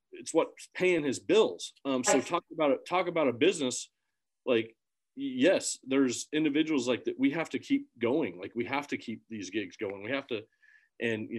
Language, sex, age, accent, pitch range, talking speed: English, male, 40-59, American, 115-140 Hz, 200 wpm